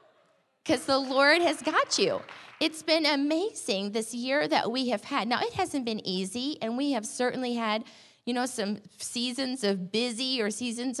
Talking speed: 180 wpm